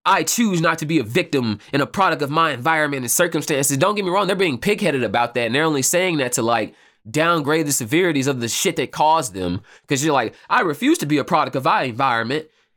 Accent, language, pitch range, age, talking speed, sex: American, English, 125-180 Hz, 20-39, 245 wpm, male